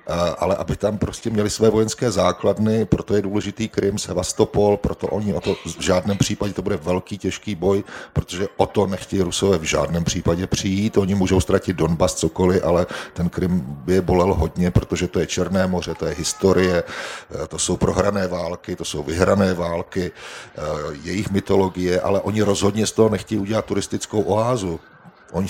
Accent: native